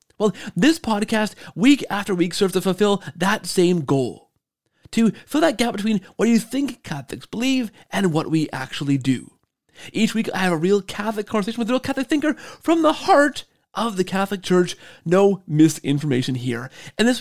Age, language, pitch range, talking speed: 30-49, English, 165-235 Hz, 180 wpm